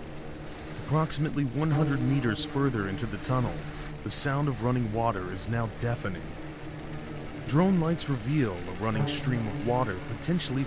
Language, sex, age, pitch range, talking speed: English, male, 30-49, 100-145 Hz, 135 wpm